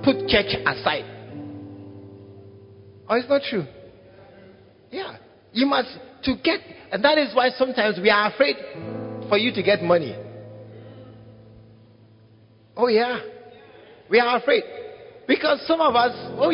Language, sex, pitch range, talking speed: English, male, 200-305 Hz, 125 wpm